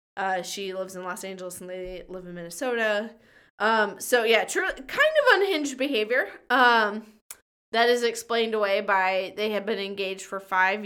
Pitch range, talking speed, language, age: 185-250 Hz, 170 wpm, English, 20-39